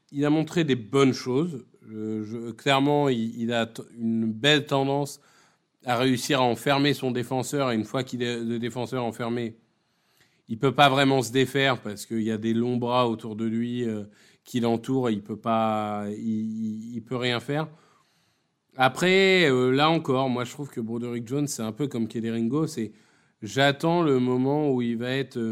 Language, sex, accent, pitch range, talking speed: French, male, French, 120-150 Hz, 195 wpm